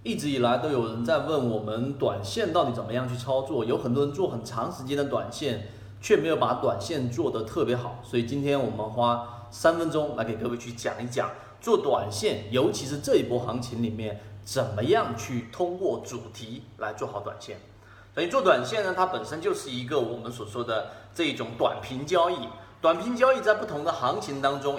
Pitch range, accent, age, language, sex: 115-180 Hz, native, 30-49, Chinese, male